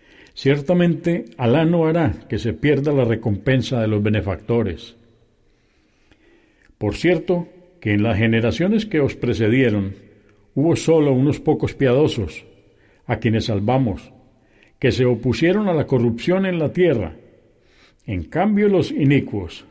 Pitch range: 110-150 Hz